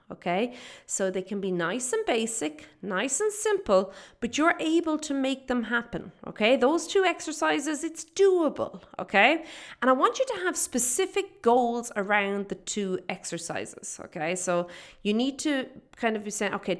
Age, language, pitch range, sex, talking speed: 30-49, English, 185-275 Hz, female, 170 wpm